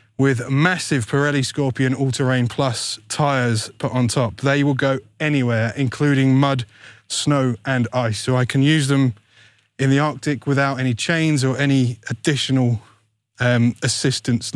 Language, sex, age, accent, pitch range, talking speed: English, male, 20-39, British, 115-140 Hz, 145 wpm